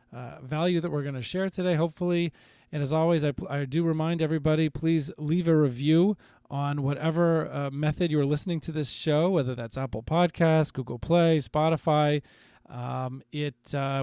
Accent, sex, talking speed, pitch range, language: American, male, 170 wpm, 140-165 Hz, English